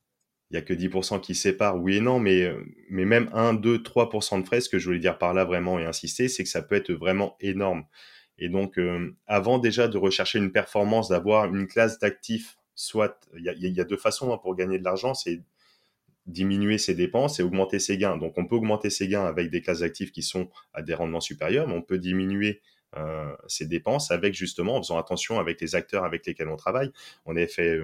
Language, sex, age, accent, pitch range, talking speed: French, male, 20-39, French, 85-100 Hz, 225 wpm